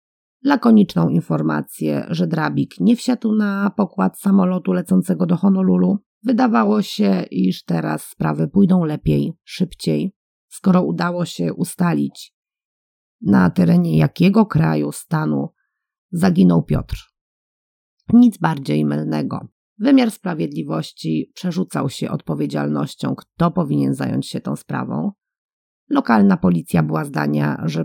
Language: Polish